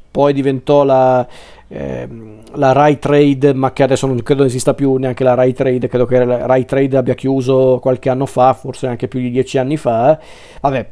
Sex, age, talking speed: male, 40-59, 200 wpm